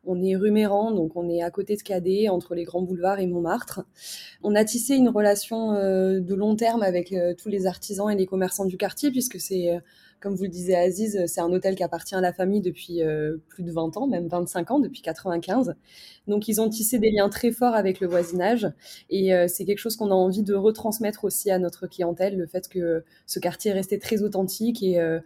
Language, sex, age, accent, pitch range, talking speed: French, female, 20-39, French, 180-210 Hz, 220 wpm